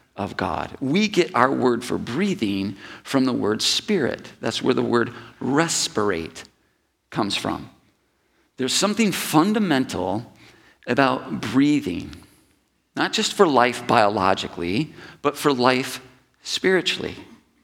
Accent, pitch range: American, 115-170 Hz